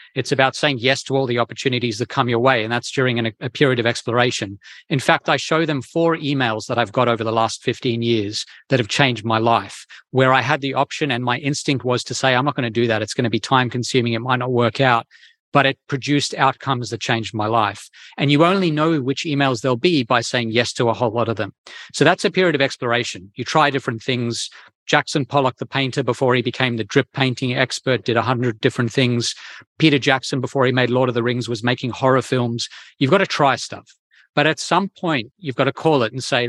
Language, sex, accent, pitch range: English, male, Australian, 120-140 Hz